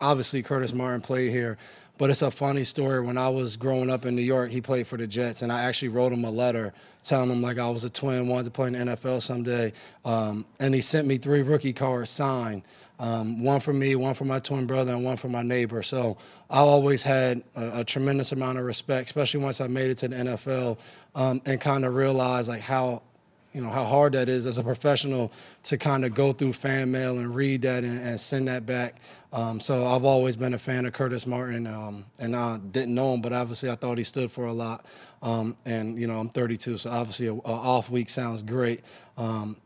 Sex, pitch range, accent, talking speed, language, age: male, 120-130 Hz, American, 235 wpm, English, 20-39